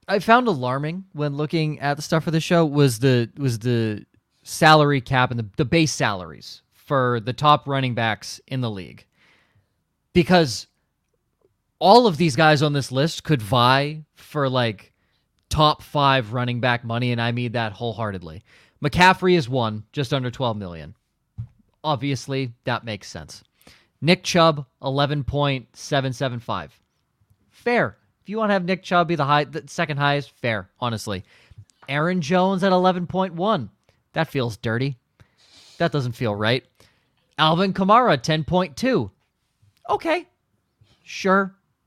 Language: English